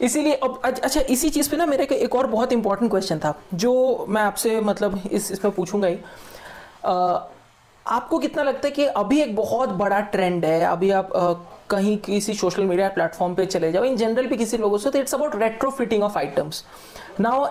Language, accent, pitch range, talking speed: Hindi, native, 190-250 Hz, 200 wpm